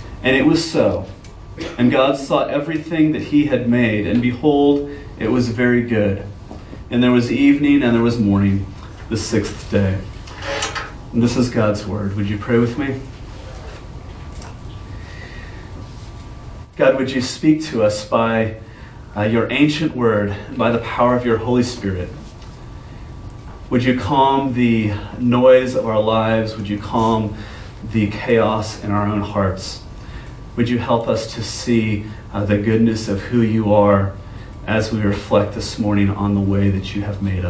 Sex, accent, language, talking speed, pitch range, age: male, American, English, 160 wpm, 100-125 Hz, 30-49